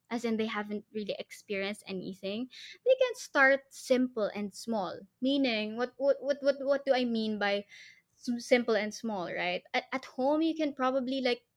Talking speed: 175 wpm